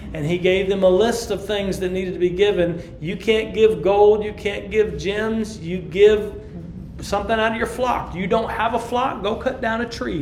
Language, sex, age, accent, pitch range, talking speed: English, male, 40-59, American, 165-210 Hz, 225 wpm